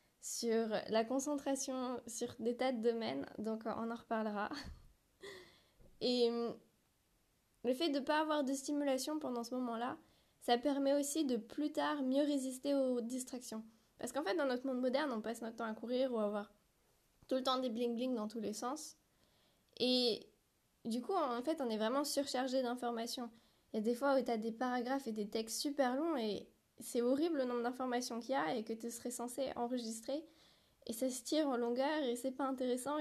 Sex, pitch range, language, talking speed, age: female, 235-275 Hz, French, 200 wpm, 10-29